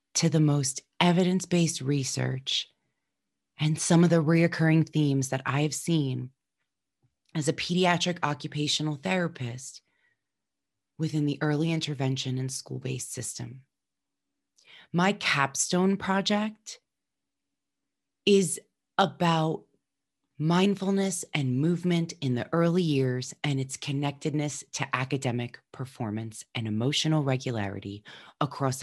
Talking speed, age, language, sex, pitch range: 100 wpm, 30-49, English, female, 135-180 Hz